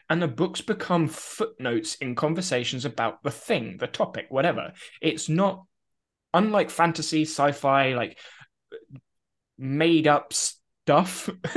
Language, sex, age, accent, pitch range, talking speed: English, male, 20-39, British, 135-170 Hz, 115 wpm